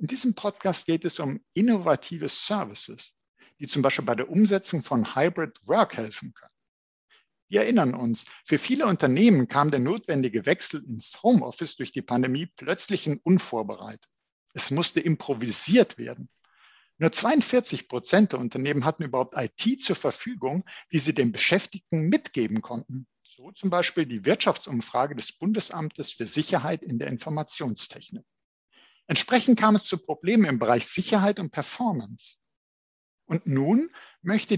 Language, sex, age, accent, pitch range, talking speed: German, male, 50-69, German, 130-205 Hz, 140 wpm